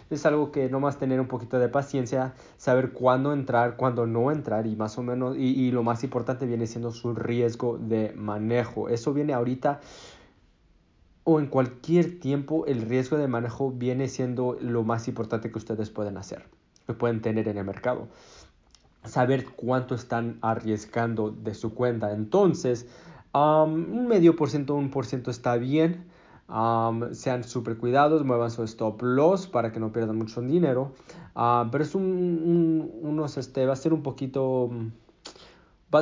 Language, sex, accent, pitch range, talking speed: Spanish, male, Mexican, 115-135 Hz, 170 wpm